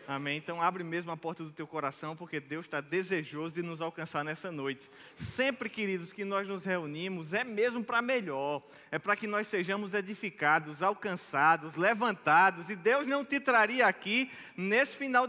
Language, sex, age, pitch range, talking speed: Portuguese, male, 20-39, 150-205 Hz, 175 wpm